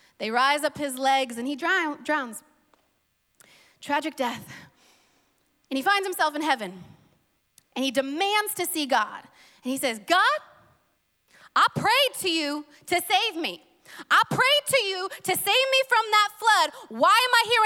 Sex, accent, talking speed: female, American, 160 wpm